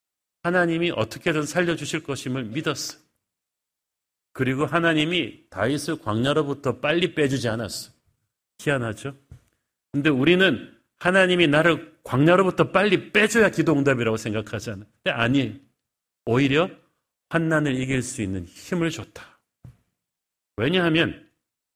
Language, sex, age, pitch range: Korean, male, 40-59, 120-165 Hz